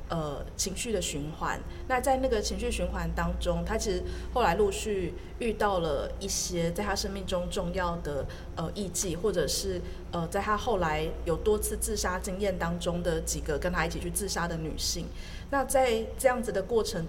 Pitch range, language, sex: 170-215 Hz, Chinese, female